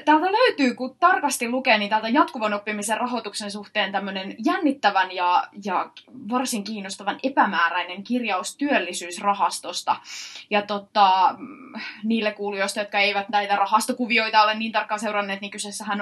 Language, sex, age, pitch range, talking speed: Finnish, female, 20-39, 195-245 Hz, 125 wpm